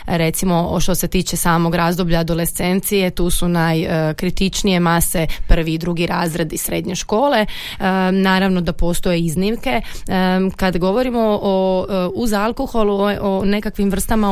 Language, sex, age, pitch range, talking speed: Croatian, female, 30-49, 175-200 Hz, 130 wpm